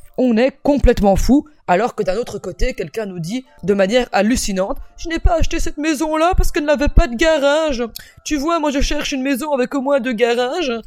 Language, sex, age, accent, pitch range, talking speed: French, female, 20-39, French, 200-270 Hz, 220 wpm